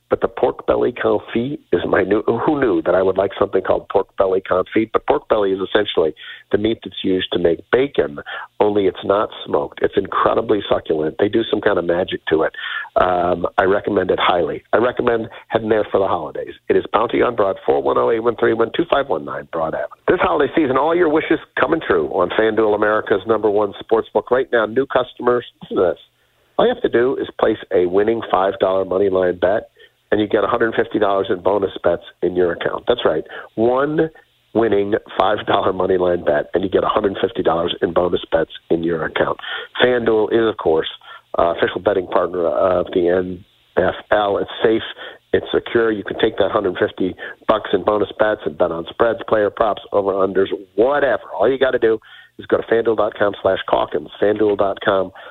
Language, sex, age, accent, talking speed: English, male, 50-69, American, 185 wpm